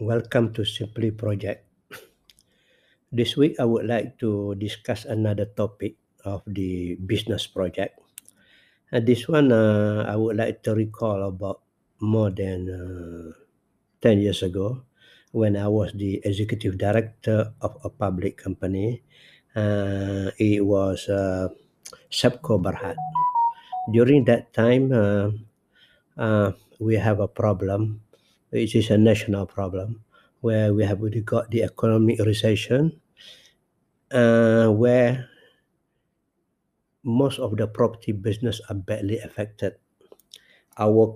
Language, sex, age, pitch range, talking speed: English, male, 60-79, 100-115 Hz, 120 wpm